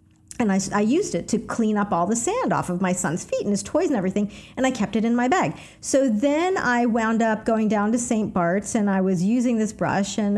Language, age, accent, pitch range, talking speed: English, 50-69, American, 195-260 Hz, 260 wpm